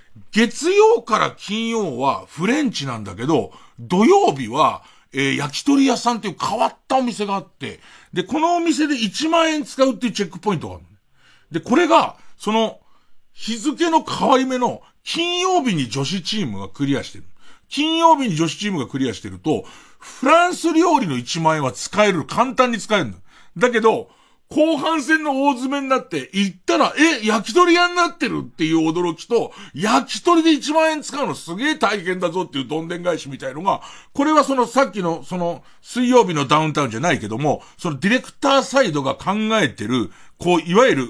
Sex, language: male, Japanese